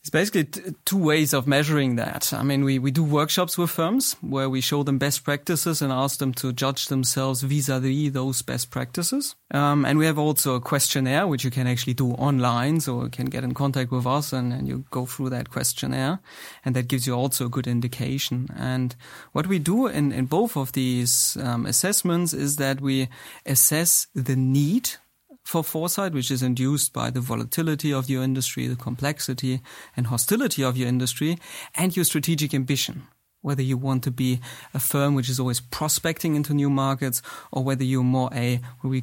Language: Danish